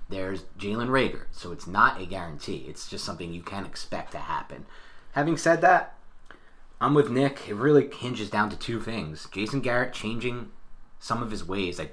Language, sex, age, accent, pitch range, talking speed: English, male, 30-49, American, 85-110 Hz, 185 wpm